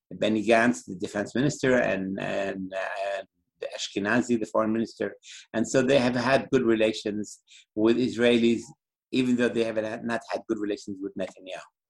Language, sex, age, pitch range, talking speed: English, male, 50-69, 105-130 Hz, 160 wpm